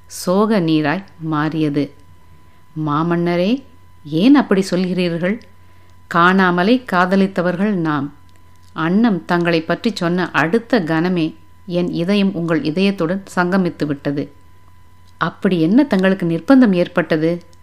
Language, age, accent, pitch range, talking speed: Tamil, 50-69, native, 155-190 Hz, 90 wpm